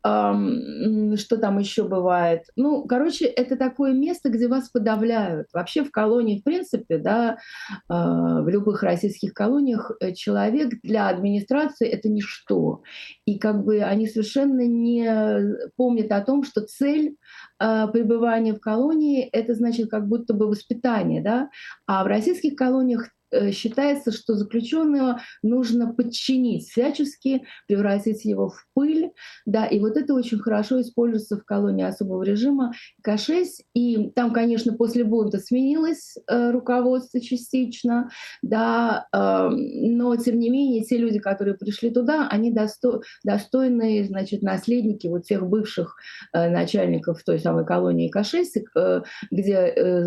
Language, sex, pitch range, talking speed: Russian, female, 210-255 Hz, 135 wpm